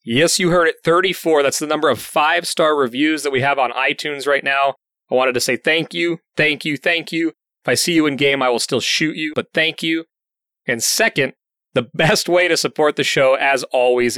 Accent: American